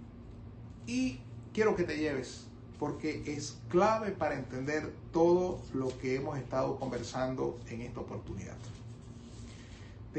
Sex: male